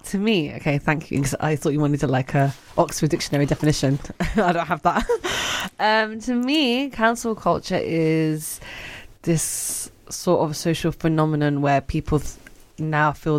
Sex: female